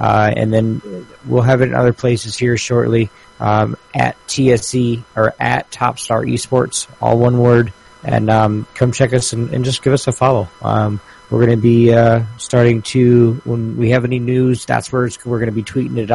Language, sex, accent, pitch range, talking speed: English, male, American, 110-130 Hz, 210 wpm